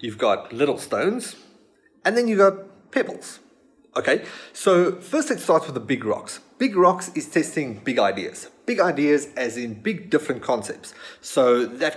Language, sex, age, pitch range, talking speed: English, male, 30-49, 125-170 Hz, 160 wpm